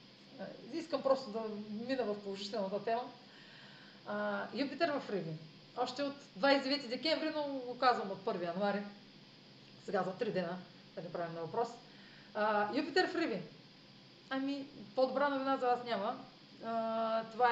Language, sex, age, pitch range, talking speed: Bulgarian, female, 30-49, 185-245 Hz, 130 wpm